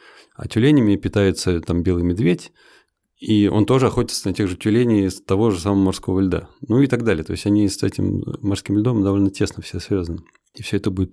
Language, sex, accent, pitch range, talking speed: Russian, male, native, 95-115 Hz, 210 wpm